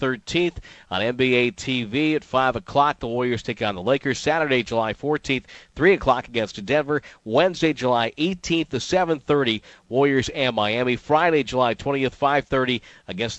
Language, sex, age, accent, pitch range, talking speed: English, male, 50-69, American, 115-145 Hz, 150 wpm